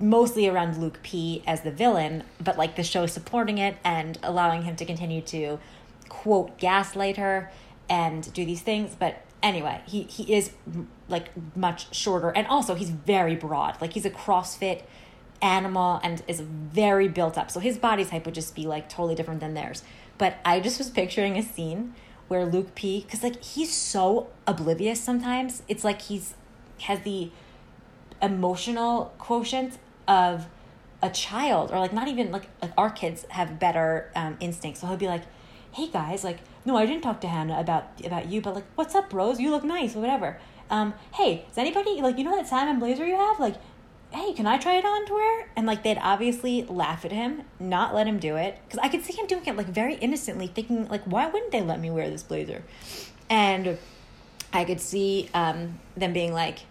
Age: 20-39